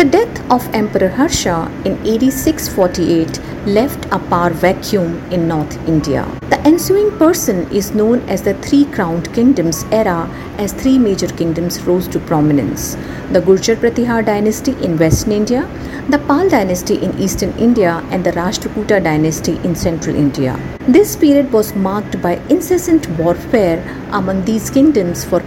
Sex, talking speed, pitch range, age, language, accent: female, 150 wpm, 170-235 Hz, 50-69, English, Indian